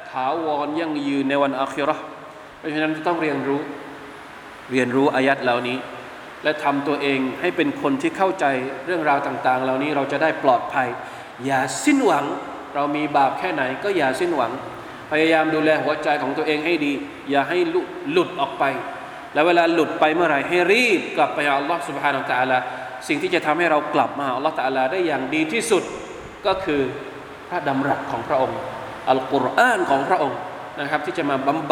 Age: 20-39